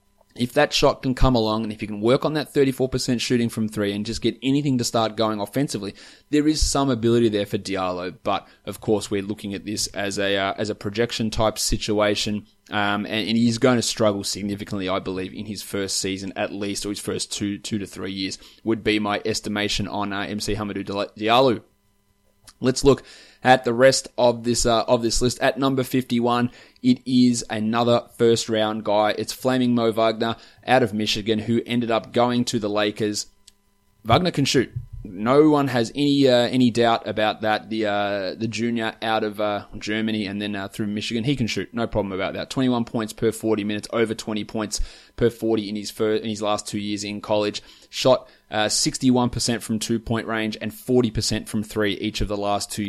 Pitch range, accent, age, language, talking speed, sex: 105-120 Hz, Australian, 20-39, English, 205 wpm, male